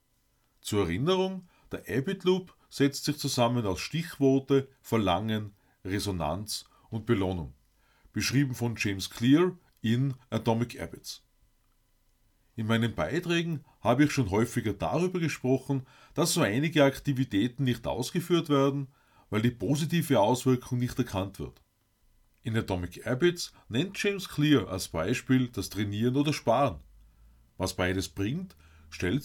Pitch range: 105-145 Hz